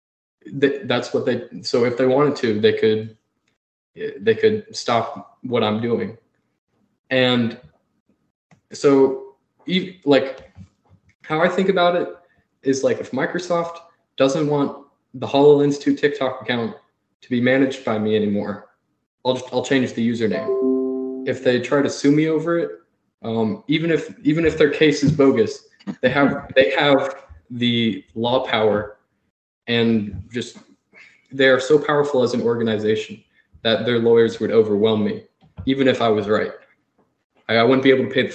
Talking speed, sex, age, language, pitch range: 155 wpm, male, 20-39, English, 115-145 Hz